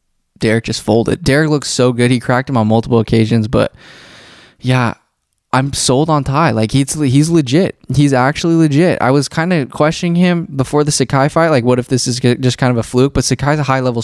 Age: 20-39